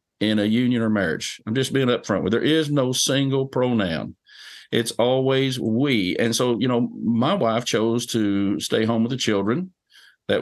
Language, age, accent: English, 50-69, American